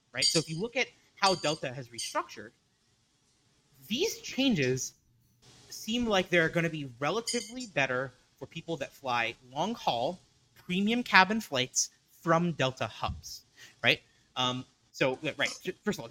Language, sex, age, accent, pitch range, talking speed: English, male, 30-49, American, 130-180 Hz, 140 wpm